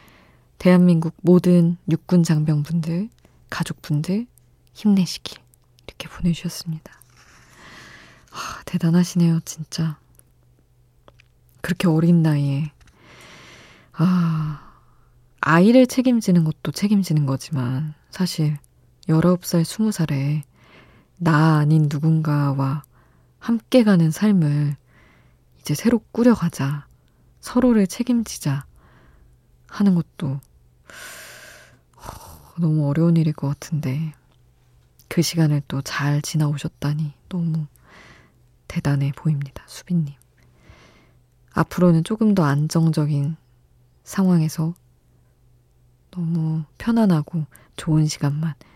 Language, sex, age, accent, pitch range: Korean, female, 20-39, native, 140-175 Hz